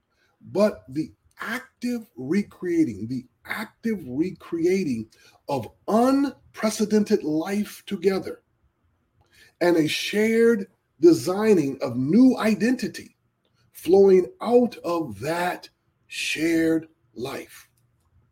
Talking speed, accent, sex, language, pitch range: 80 wpm, American, male, English, 155-235 Hz